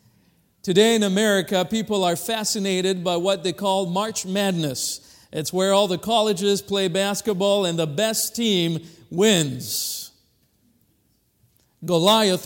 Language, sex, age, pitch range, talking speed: English, male, 40-59, 165-220 Hz, 120 wpm